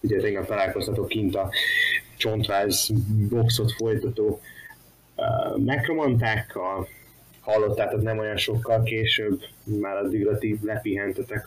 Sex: male